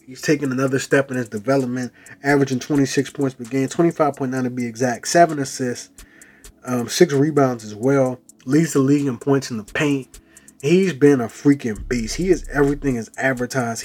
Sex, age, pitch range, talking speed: male, 20-39, 115-145 Hz, 180 wpm